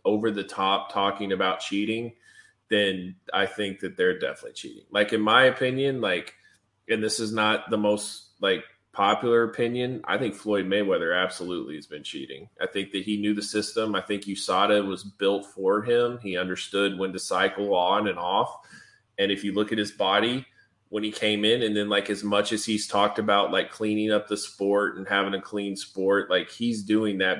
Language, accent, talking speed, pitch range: English, American, 195 wpm, 100-110 Hz